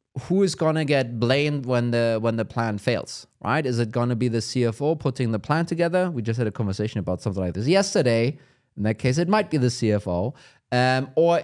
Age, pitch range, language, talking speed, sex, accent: 30-49, 115-145 Hz, English, 220 wpm, male, German